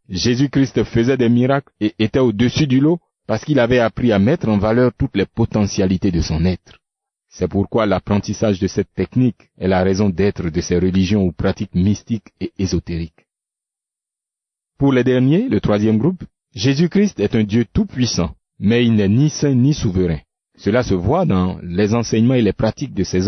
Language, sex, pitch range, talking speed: French, male, 95-130 Hz, 180 wpm